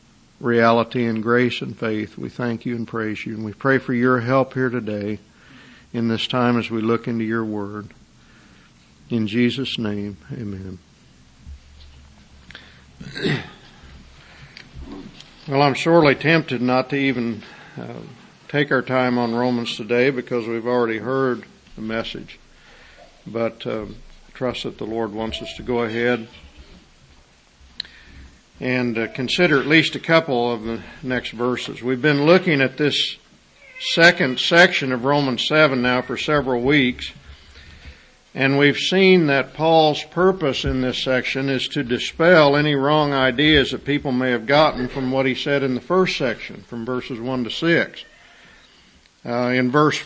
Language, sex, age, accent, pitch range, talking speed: English, male, 50-69, American, 115-145 Hz, 145 wpm